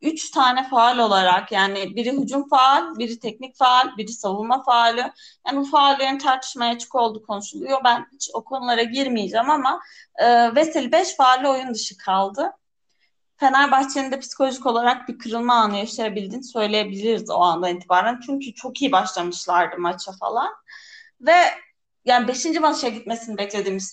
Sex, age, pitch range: female, 30-49, 205-280 Hz